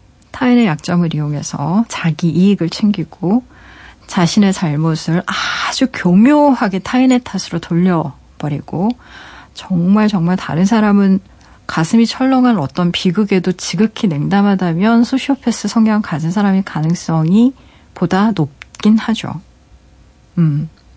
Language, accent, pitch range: Korean, native, 170-235 Hz